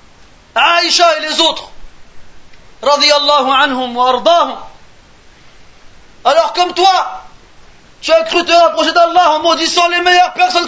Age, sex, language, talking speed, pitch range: 30-49, male, French, 125 wpm, 300-350 Hz